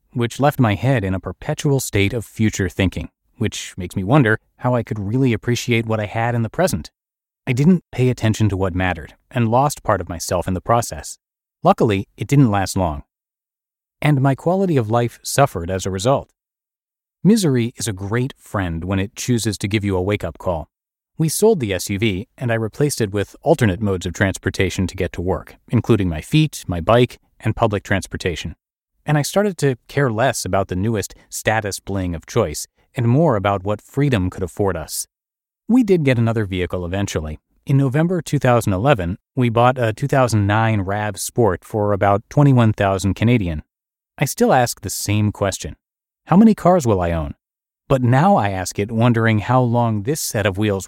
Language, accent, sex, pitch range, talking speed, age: English, American, male, 95-125 Hz, 185 wpm, 30-49